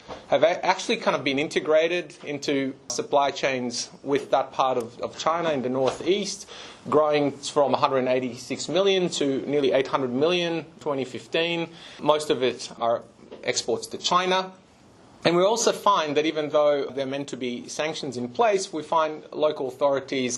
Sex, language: male, English